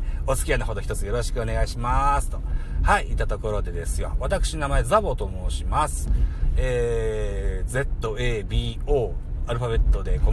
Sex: male